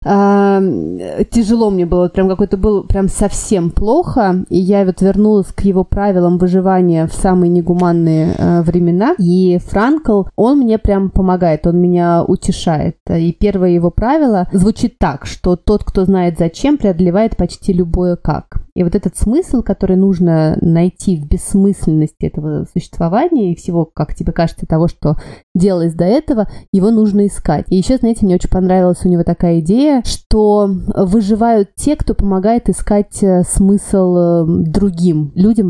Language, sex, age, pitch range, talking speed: Russian, female, 20-39, 175-205 Hz, 145 wpm